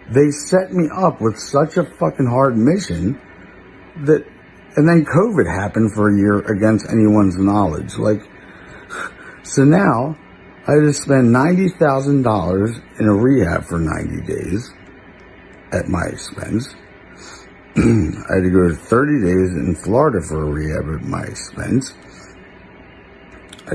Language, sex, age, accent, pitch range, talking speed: English, male, 60-79, American, 95-150 Hz, 135 wpm